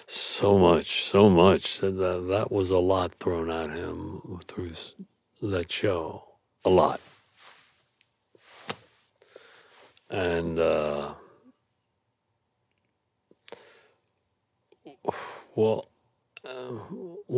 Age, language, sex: 60-79, English, male